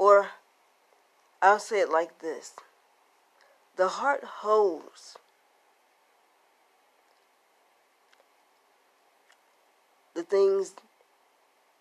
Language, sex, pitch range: English, female, 170-205 Hz